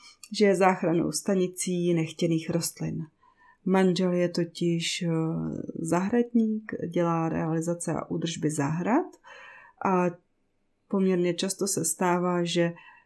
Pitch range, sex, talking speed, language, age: 170-195 Hz, female, 95 wpm, Czech, 30-49